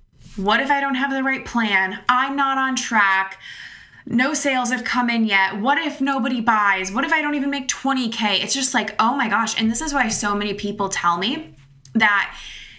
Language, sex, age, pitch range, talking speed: English, female, 20-39, 190-255 Hz, 210 wpm